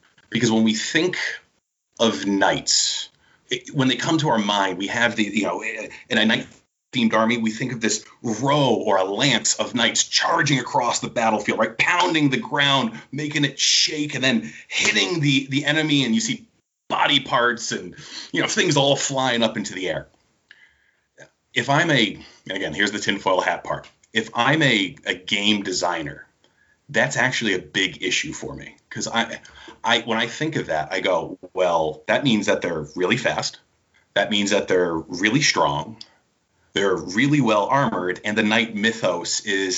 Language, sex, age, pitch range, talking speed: English, male, 30-49, 100-135 Hz, 180 wpm